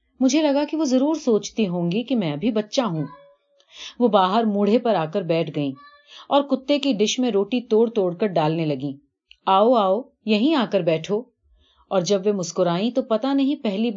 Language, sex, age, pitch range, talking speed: Urdu, female, 30-49, 165-240 Hz, 180 wpm